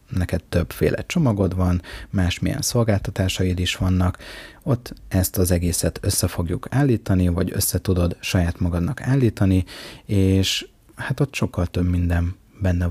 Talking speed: 130 wpm